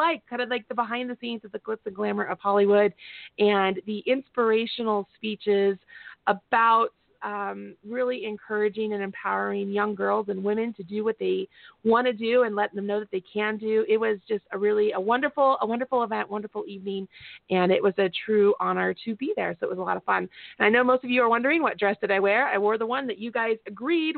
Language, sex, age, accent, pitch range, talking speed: English, female, 30-49, American, 205-250 Hz, 230 wpm